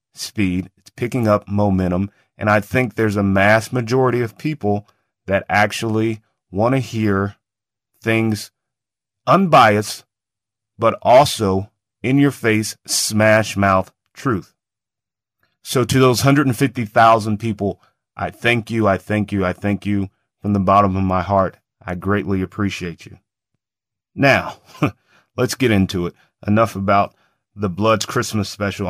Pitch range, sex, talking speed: 95-115 Hz, male, 135 wpm